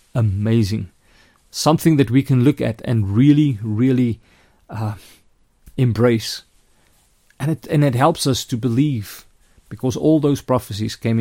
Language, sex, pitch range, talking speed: English, male, 110-140 Hz, 135 wpm